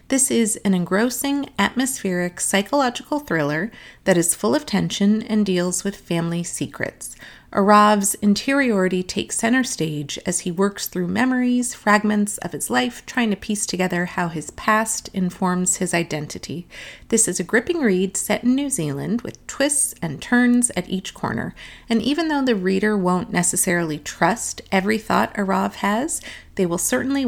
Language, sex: English, female